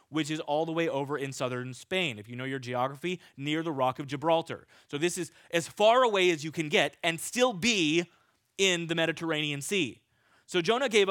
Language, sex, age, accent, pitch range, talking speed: English, male, 20-39, American, 140-190 Hz, 210 wpm